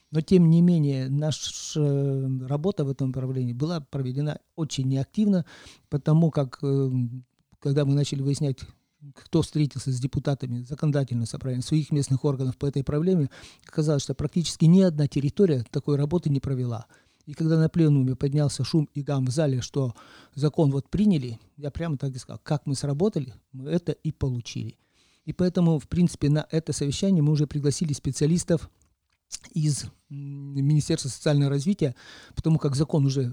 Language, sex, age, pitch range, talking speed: Russian, male, 40-59, 135-160 Hz, 155 wpm